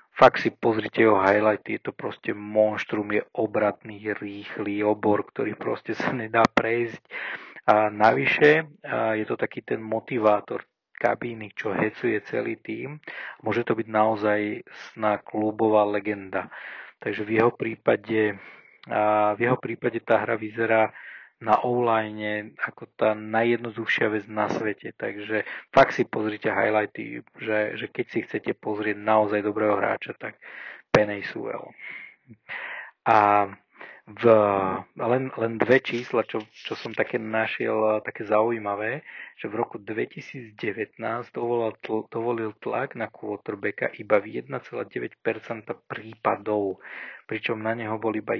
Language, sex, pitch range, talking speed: Slovak, male, 105-115 Hz, 130 wpm